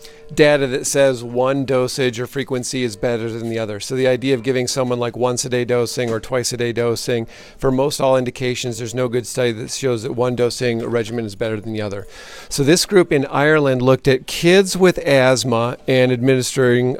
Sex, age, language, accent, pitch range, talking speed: male, 40-59, English, American, 120-140 Hz, 210 wpm